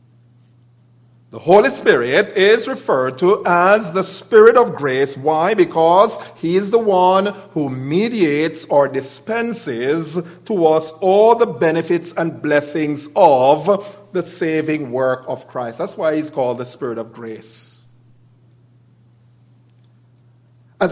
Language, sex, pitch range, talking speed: English, male, 120-175 Hz, 125 wpm